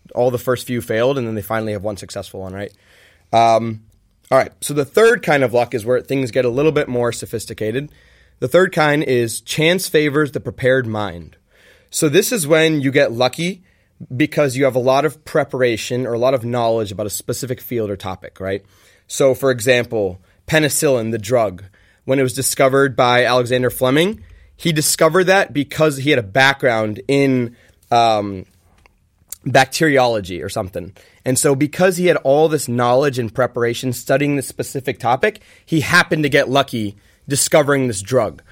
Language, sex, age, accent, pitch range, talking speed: English, male, 20-39, American, 115-140 Hz, 180 wpm